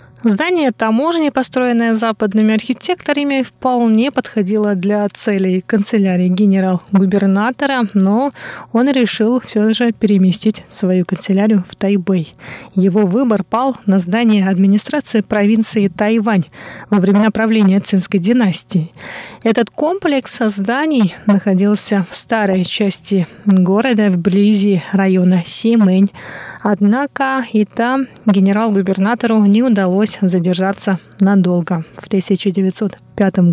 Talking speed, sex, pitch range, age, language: 100 wpm, female, 195-235 Hz, 20-39, Russian